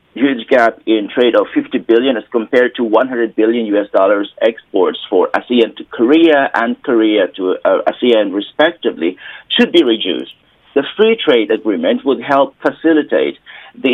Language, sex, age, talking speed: English, male, 50-69, 155 wpm